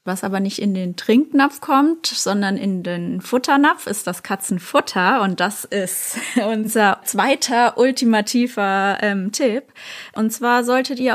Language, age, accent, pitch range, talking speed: German, 20-39, German, 200-235 Hz, 140 wpm